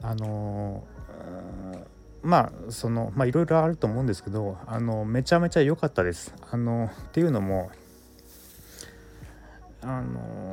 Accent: native